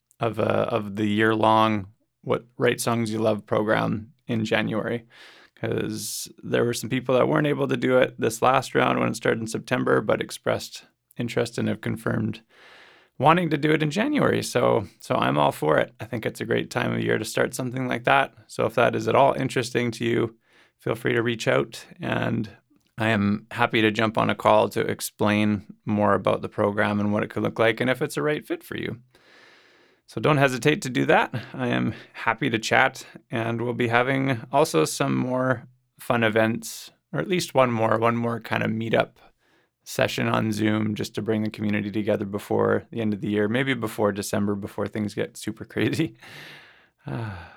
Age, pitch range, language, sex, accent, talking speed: 20-39, 105-125 Hz, English, male, American, 200 wpm